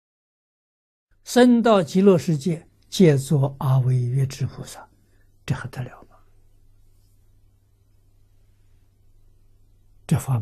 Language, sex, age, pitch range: Chinese, male, 60-79, 100-125 Hz